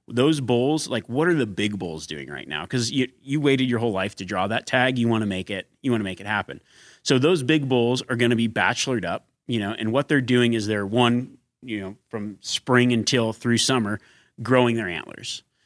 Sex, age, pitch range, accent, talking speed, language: male, 30-49, 110-130 Hz, American, 240 wpm, English